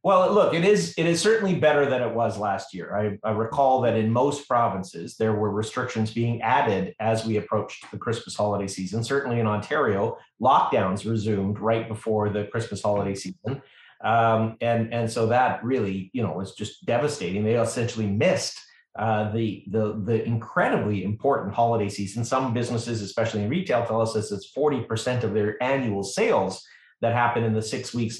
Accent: American